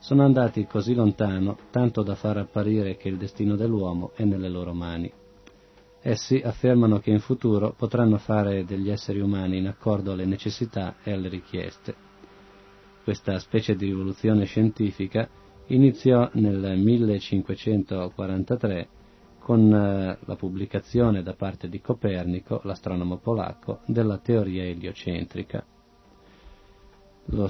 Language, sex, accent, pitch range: Italian, male, native, 95-115 Hz